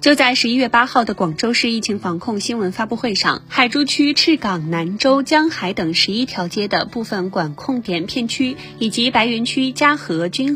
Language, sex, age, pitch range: Chinese, female, 20-39, 185-260 Hz